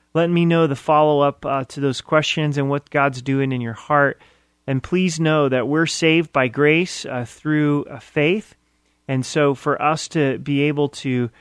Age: 30-49